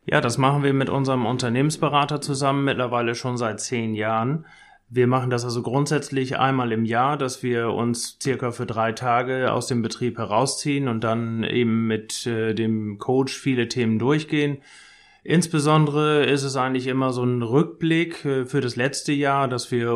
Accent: German